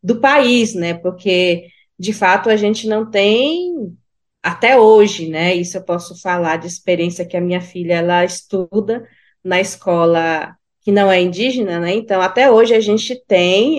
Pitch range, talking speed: 195-250 Hz, 165 wpm